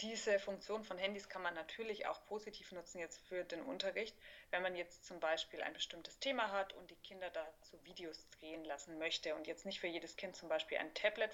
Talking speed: 215 wpm